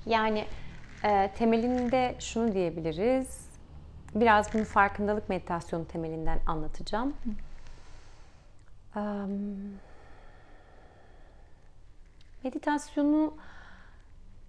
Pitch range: 160-205 Hz